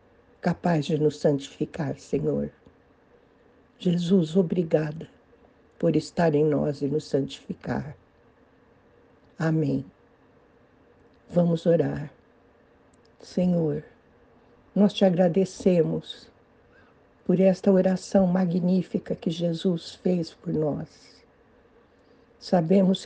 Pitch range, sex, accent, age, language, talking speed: 160-190 Hz, female, Brazilian, 60-79, Portuguese, 80 wpm